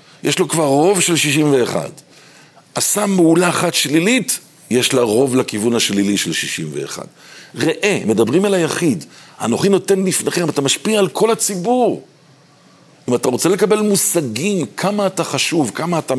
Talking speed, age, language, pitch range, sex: 150 wpm, 50-69, Hebrew, 140-195 Hz, male